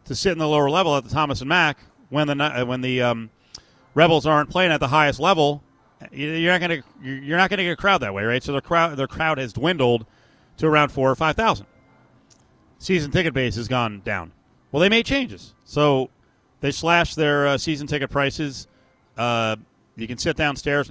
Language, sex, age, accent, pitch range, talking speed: English, male, 30-49, American, 125-155 Hz, 205 wpm